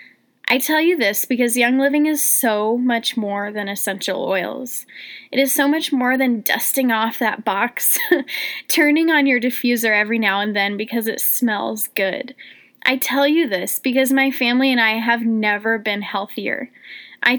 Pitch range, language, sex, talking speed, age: 225-270 Hz, English, female, 175 wpm, 10-29